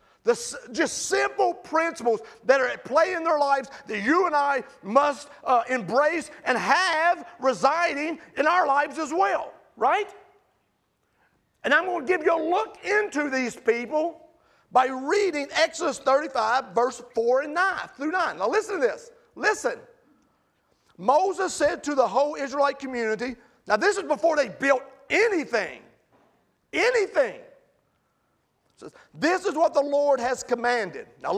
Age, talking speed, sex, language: 40-59, 145 wpm, male, English